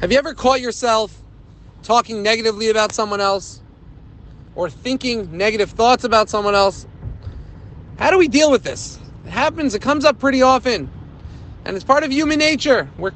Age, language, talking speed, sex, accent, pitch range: 30-49, English, 170 wpm, male, American, 220-270 Hz